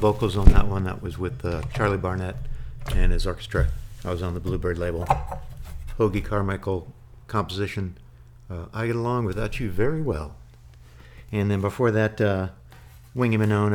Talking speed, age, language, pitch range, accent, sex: 160 wpm, 50-69, English, 85-110 Hz, American, male